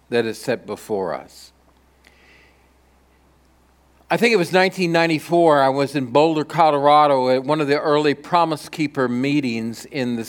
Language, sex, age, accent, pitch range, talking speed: English, male, 50-69, American, 120-150 Hz, 145 wpm